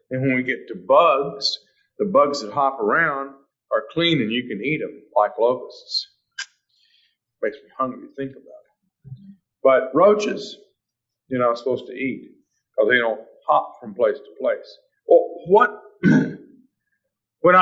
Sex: male